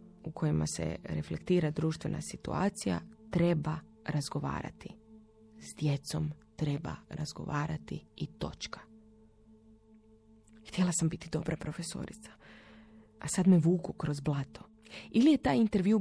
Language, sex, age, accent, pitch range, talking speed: Croatian, female, 20-39, native, 135-175 Hz, 110 wpm